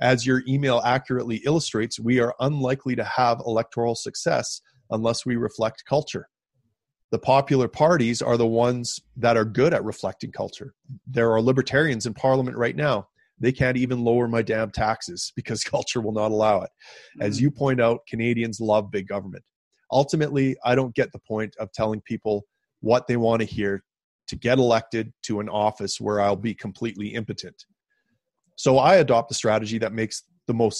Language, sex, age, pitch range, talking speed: English, male, 30-49, 110-130 Hz, 175 wpm